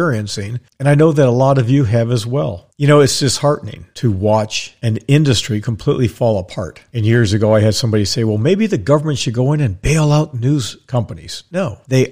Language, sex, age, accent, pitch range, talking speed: English, male, 50-69, American, 110-145 Hz, 220 wpm